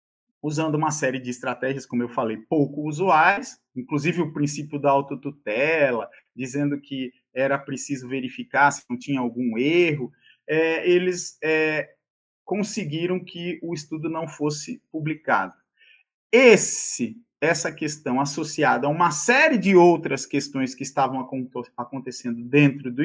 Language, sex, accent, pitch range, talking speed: Portuguese, male, Brazilian, 145-200 Hz, 120 wpm